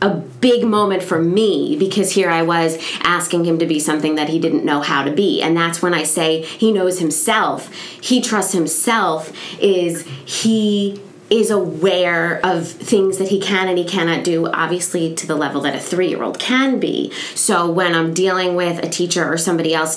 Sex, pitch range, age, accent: female, 170-210 Hz, 20-39, American